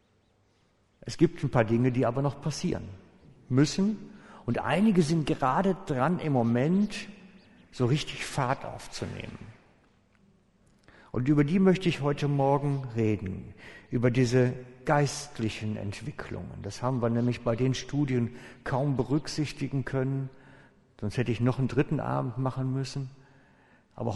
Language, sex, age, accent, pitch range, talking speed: German, male, 60-79, German, 115-145 Hz, 130 wpm